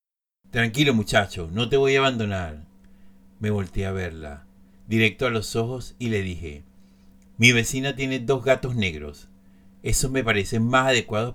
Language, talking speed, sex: Spanish, 155 wpm, male